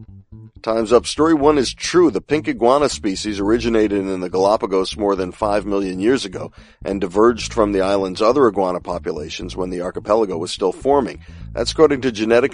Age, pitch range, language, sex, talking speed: 50-69, 95-115 Hz, English, male, 180 wpm